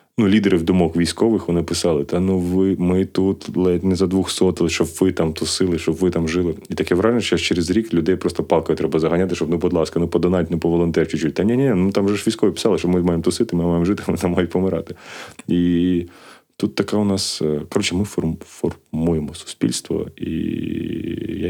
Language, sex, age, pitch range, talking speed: Ukrainian, male, 20-39, 80-95 Hz, 205 wpm